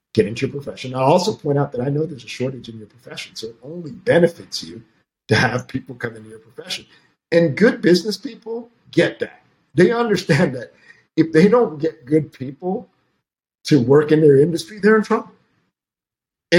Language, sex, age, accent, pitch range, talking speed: English, male, 50-69, American, 130-180 Hz, 190 wpm